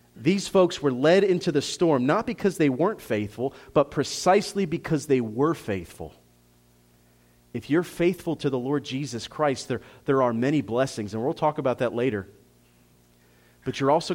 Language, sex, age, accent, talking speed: English, male, 30-49, American, 170 wpm